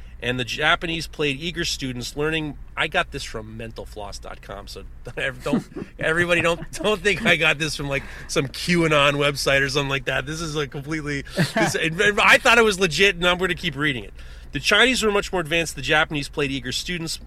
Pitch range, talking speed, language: 115-160 Hz, 205 wpm, English